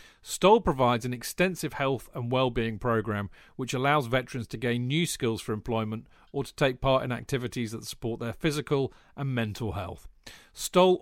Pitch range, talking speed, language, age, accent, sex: 115-145 Hz, 170 wpm, English, 40-59, British, male